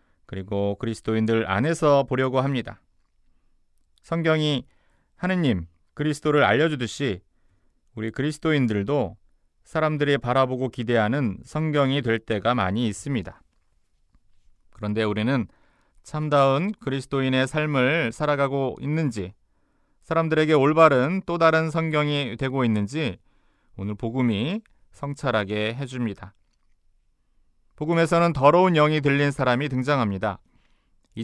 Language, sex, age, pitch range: Korean, male, 30-49, 100-145 Hz